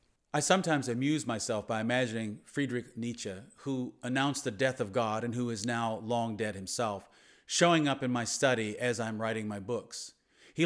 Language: English